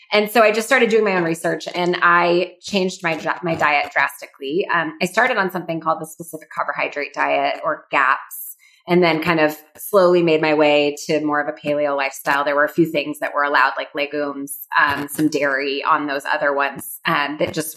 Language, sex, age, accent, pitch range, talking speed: English, female, 20-39, American, 155-200 Hz, 210 wpm